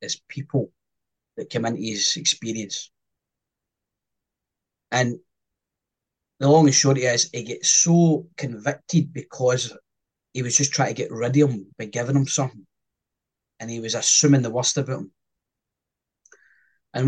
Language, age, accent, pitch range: English, 20-39, British, 115-140 Hz